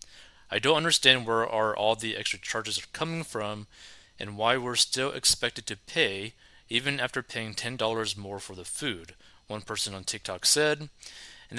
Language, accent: English, American